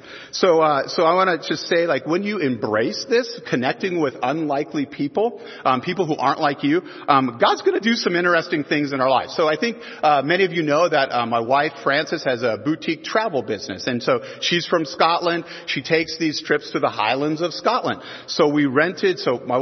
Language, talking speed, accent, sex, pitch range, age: English, 215 wpm, American, male, 150-200 Hz, 40-59